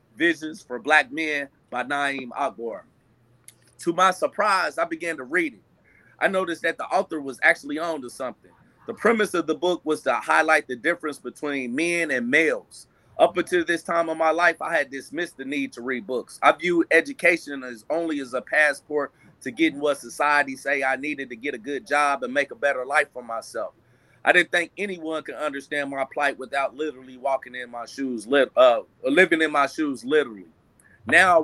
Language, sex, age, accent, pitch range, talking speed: English, male, 30-49, American, 135-170 Hz, 195 wpm